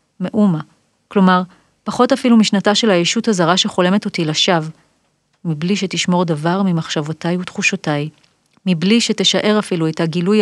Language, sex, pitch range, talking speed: Hebrew, female, 175-230 Hz, 120 wpm